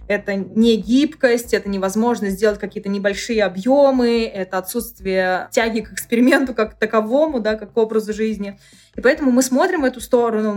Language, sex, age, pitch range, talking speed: Russian, female, 20-39, 195-235 Hz, 155 wpm